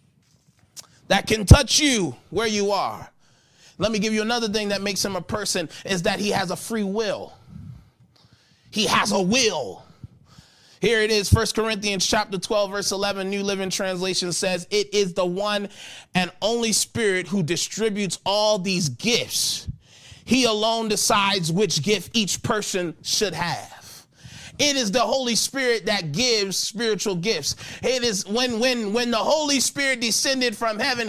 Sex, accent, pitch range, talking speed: male, American, 195-250 Hz, 160 wpm